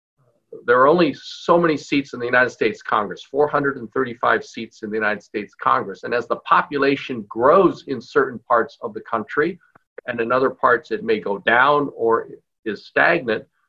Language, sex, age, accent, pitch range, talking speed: English, male, 50-69, American, 125-165 Hz, 175 wpm